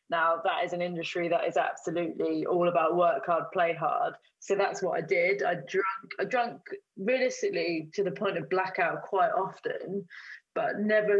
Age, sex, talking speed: 20-39, female, 175 wpm